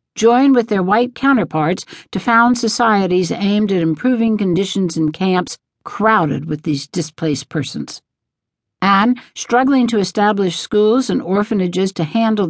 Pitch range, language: 155-215 Hz, English